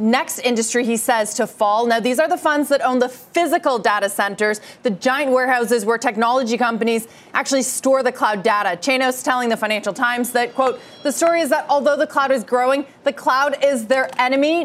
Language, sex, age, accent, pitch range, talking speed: English, female, 30-49, American, 235-275 Hz, 200 wpm